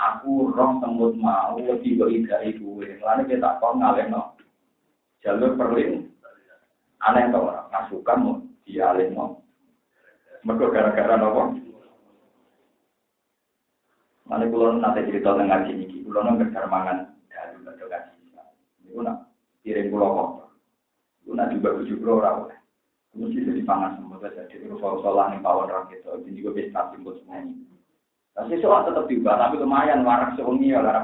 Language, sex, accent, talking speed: Indonesian, male, native, 120 wpm